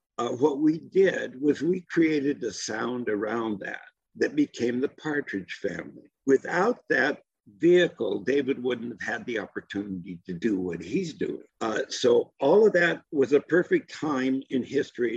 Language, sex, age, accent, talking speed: English, male, 60-79, American, 160 wpm